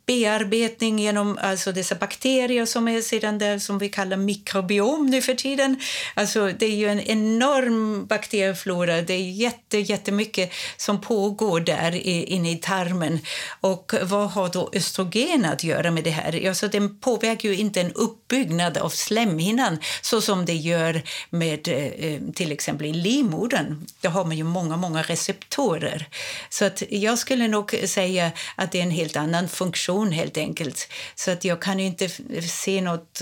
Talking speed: 160 wpm